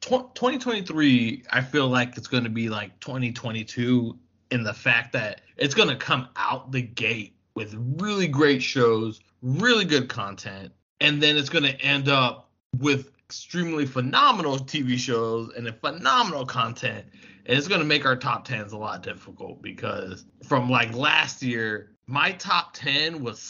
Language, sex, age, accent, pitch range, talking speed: English, male, 20-39, American, 120-145 Hz, 165 wpm